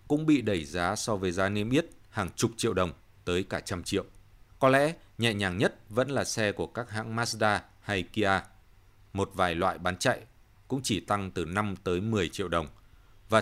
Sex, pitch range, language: male, 95-120 Hz, Vietnamese